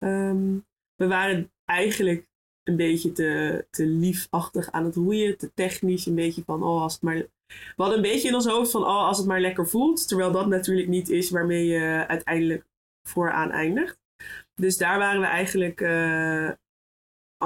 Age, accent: 20-39, Dutch